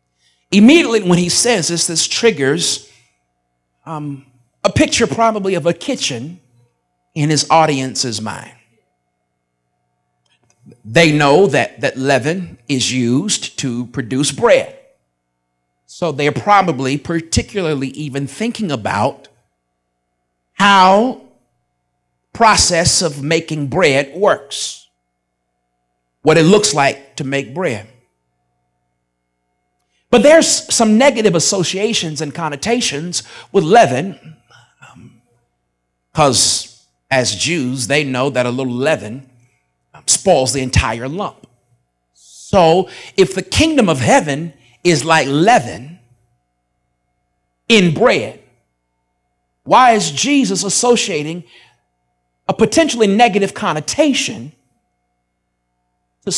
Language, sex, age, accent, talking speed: English, male, 50-69, American, 100 wpm